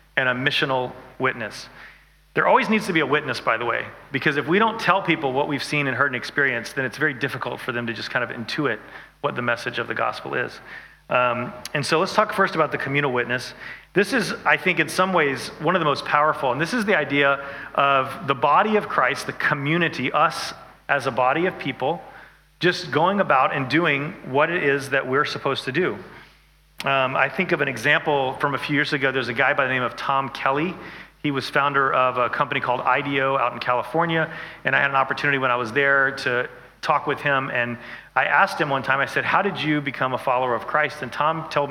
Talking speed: 230 wpm